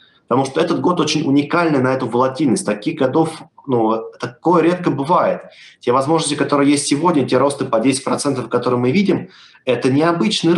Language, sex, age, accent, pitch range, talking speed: Russian, male, 30-49, native, 120-160 Hz, 165 wpm